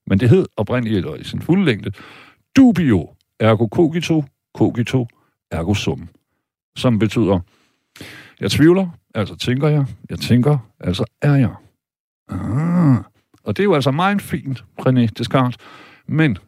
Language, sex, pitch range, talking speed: Danish, male, 100-140 Hz, 140 wpm